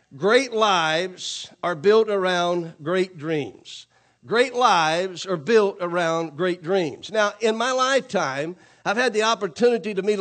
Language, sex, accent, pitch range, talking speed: English, male, American, 190-225 Hz, 140 wpm